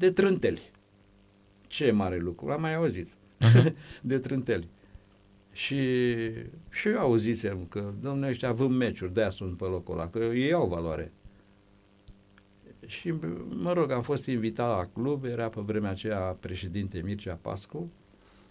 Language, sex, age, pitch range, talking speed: Romanian, male, 60-79, 100-125 Hz, 135 wpm